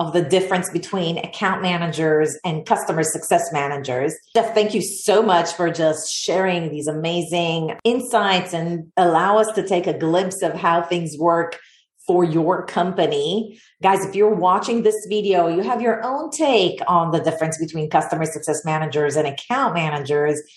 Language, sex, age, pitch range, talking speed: English, female, 40-59, 160-210 Hz, 165 wpm